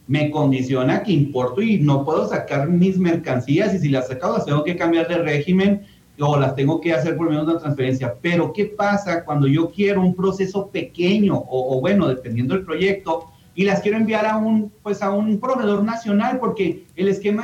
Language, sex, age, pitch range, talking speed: Spanish, male, 40-59, 150-195 Hz, 205 wpm